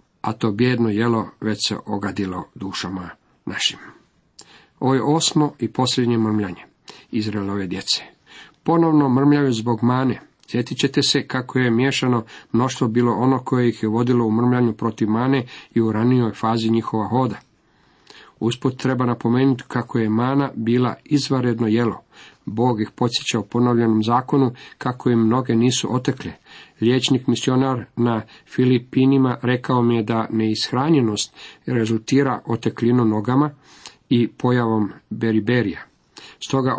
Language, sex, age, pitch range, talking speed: Croatian, male, 50-69, 115-135 Hz, 130 wpm